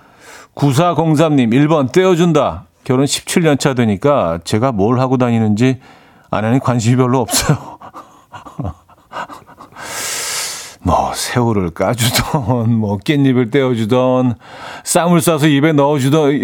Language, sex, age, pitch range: Korean, male, 40-59, 110-150 Hz